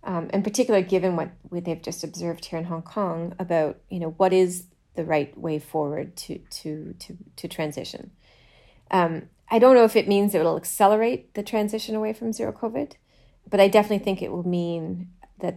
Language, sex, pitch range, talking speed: English, female, 165-190 Hz, 195 wpm